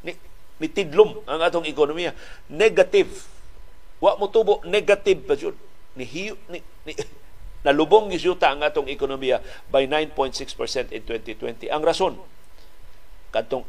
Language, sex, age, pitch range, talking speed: Filipino, male, 50-69, 125-170 Hz, 90 wpm